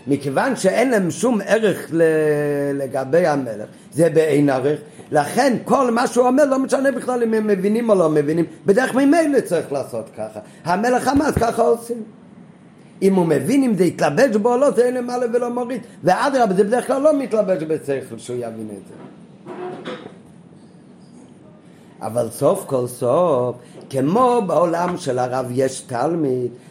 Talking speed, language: 155 wpm, Hebrew